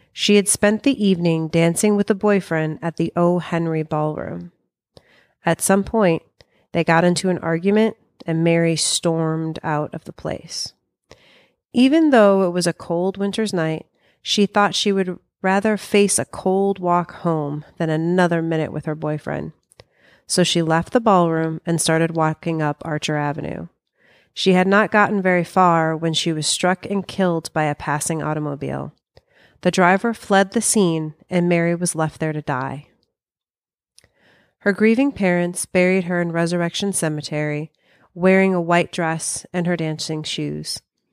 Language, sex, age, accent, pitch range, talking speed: English, female, 30-49, American, 160-190 Hz, 160 wpm